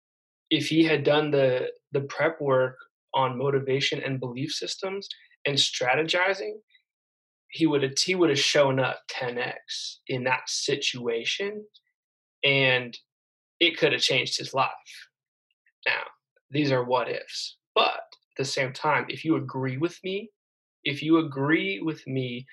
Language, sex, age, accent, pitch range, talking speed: English, male, 20-39, American, 130-155 Hz, 140 wpm